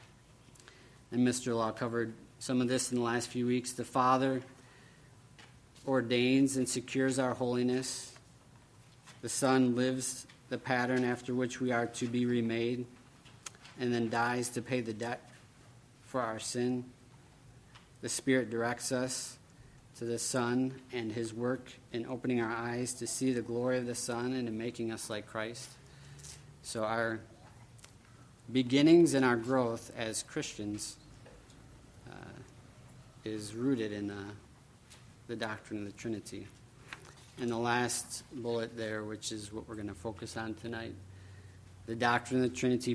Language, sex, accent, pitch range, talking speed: English, male, American, 115-125 Hz, 145 wpm